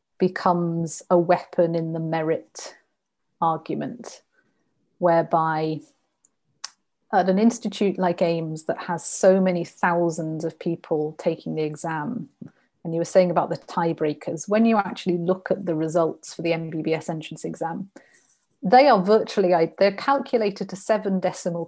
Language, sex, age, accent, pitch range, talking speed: English, female, 30-49, British, 165-190 Hz, 140 wpm